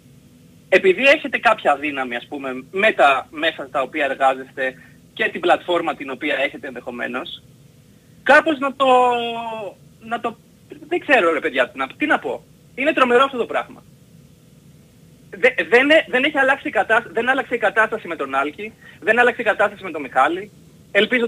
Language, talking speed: Greek, 150 wpm